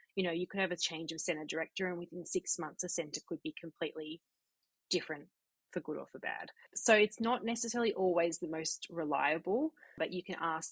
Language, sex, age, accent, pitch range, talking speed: English, female, 20-39, Australian, 155-195 Hz, 205 wpm